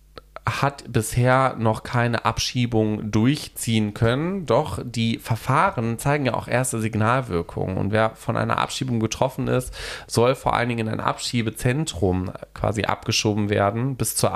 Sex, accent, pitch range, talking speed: male, German, 105-120 Hz, 140 wpm